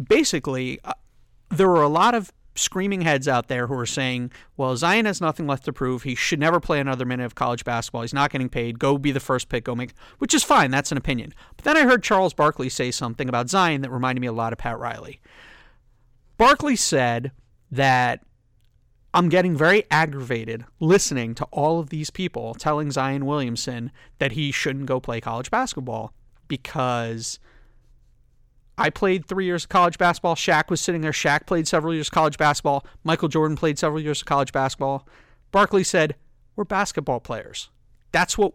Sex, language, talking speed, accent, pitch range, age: male, English, 190 wpm, American, 125-180 Hz, 30-49